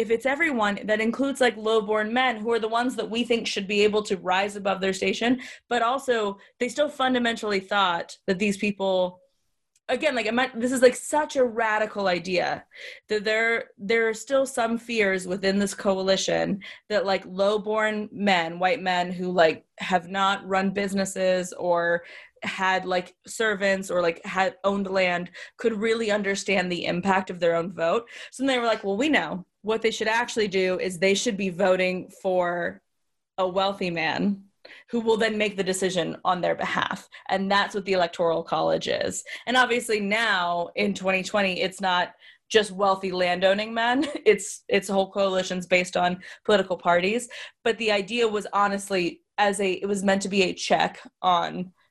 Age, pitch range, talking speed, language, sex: 20-39, 185-225 Hz, 180 wpm, English, female